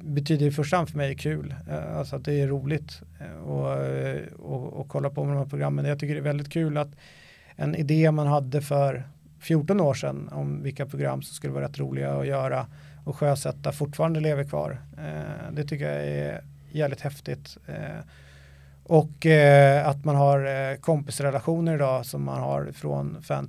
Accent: native